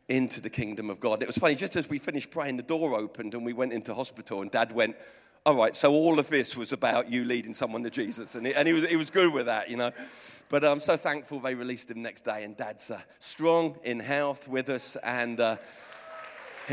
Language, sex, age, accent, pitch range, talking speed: English, male, 40-59, British, 120-150 Hz, 235 wpm